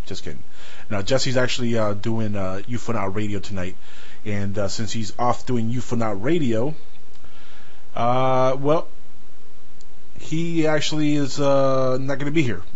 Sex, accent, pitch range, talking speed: male, American, 100-130 Hz, 140 wpm